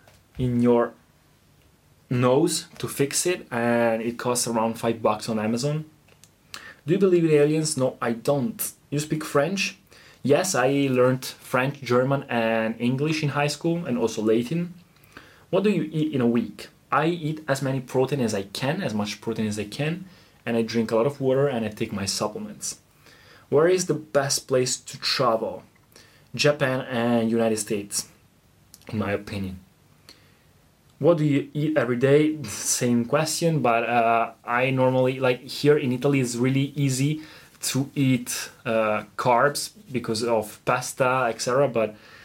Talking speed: 160 wpm